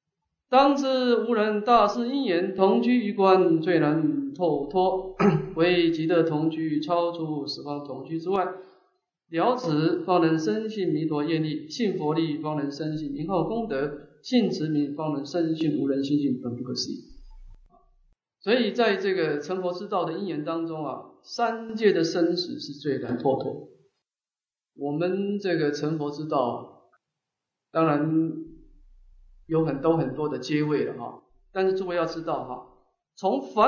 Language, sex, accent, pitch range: English, male, Chinese, 150-245 Hz